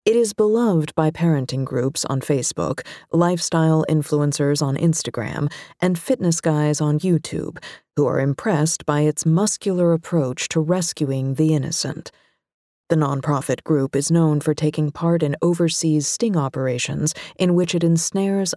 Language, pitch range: English, 150-175 Hz